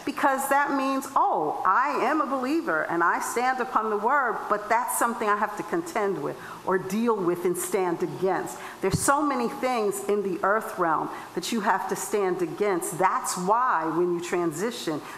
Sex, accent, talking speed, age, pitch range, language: female, American, 185 wpm, 50-69, 180-240 Hz, English